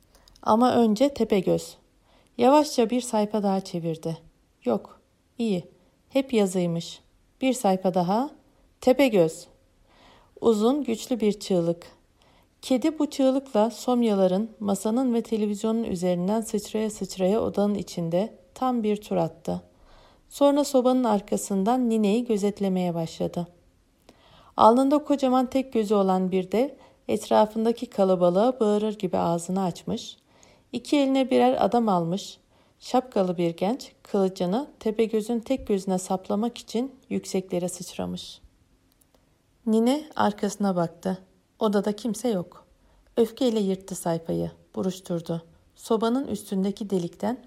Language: Turkish